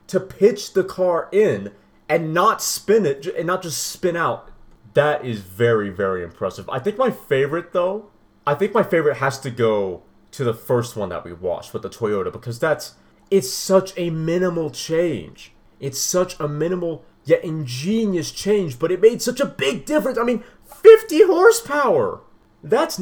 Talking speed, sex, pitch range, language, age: 175 wpm, male, 140-190 Hz, English, 30-49